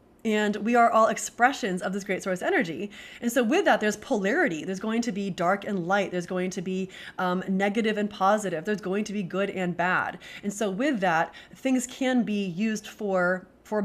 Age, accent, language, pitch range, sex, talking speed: 20-39, American, English, 190-240 Hz, female, 210 wpm